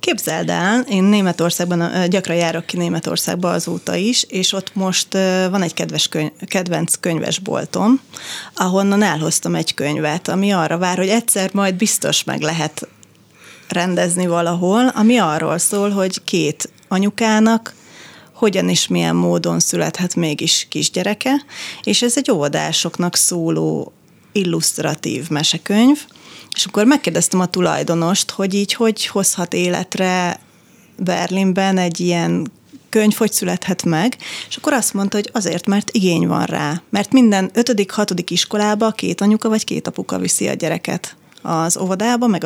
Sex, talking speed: female, 135 wpm